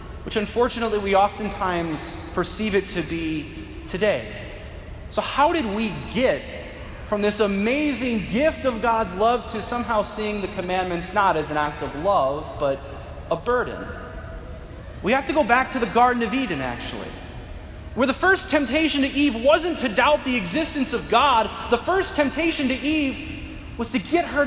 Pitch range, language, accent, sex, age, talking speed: 195-260 Hz, English, American, male, 30-49, 165 wpm